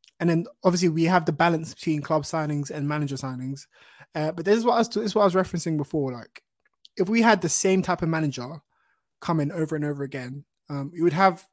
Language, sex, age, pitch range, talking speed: English, male, 20-39, 145-190 Hz, 220 wpm